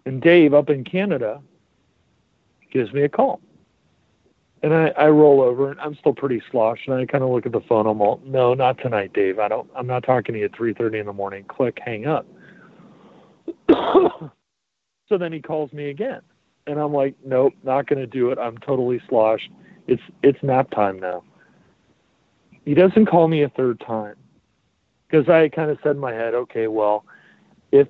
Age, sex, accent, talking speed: 40-59, male, American, 195 wpm